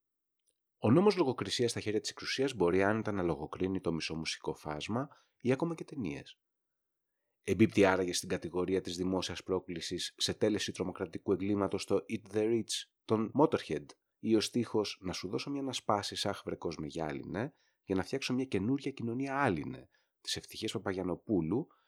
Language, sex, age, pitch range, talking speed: Greek, male, 30-49, 90-115 Hz, 160 wpm